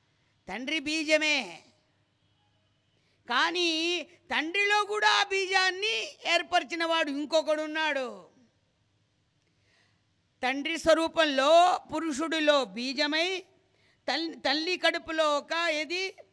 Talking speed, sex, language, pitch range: 65 wpm, female, English, 235-335 Hz